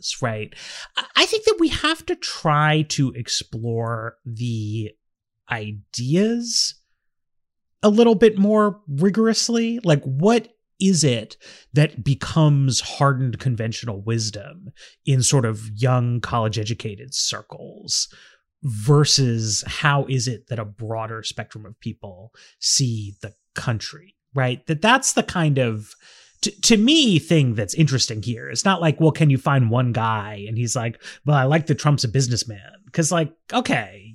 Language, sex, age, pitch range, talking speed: English, male, 30-49, 115-170 Hz, 140 wpm